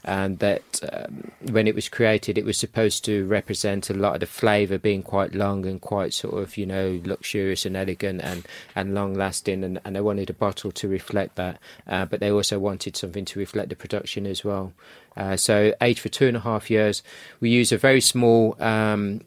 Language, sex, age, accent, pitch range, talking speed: English, male, 30-49, British, 100-115 Hz, 215 wpm